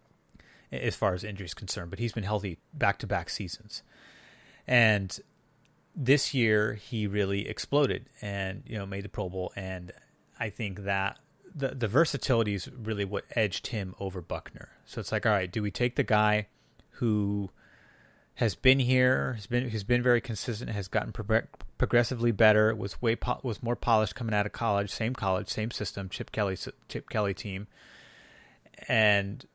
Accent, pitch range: American, 100-120 Hz